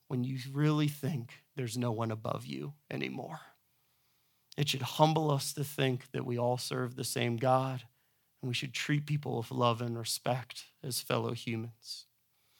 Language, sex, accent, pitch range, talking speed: English, male, American, 130-150 Hz, 165 wpm